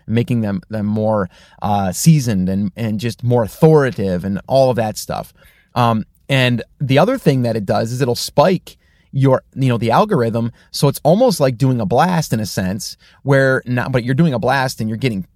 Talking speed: 205 wpm